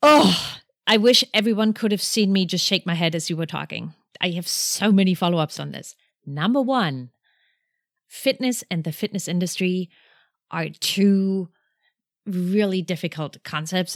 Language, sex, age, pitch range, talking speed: English, female, 30-49, 155-190 Hz, 150 wpm